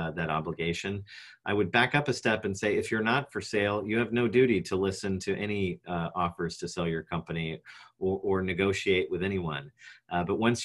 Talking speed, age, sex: 215 wpm, 40-59, male